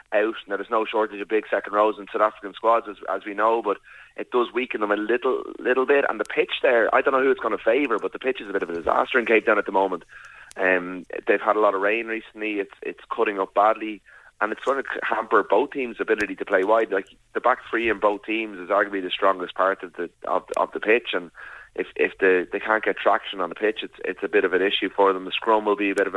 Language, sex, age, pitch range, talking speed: English, male, 30-49, 100-115 Hz, 275 wpm